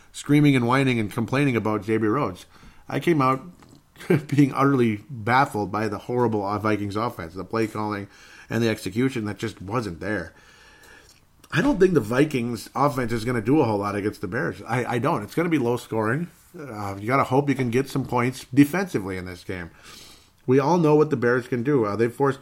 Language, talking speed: English, 210 wpm